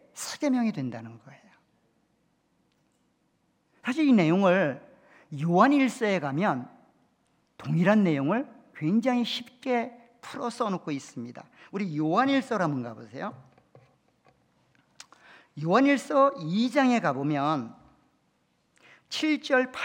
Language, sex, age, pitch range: Korean, male, 50-69, 165-250 Hz